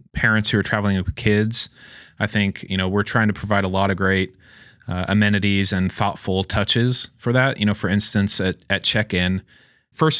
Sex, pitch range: male, 95-105 Hz